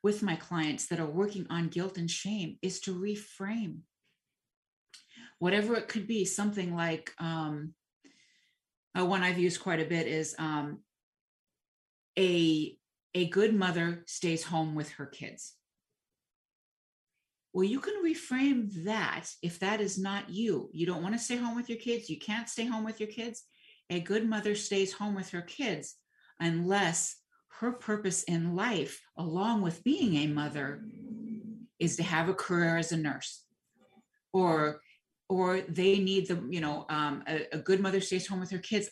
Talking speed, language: 165 wpm, English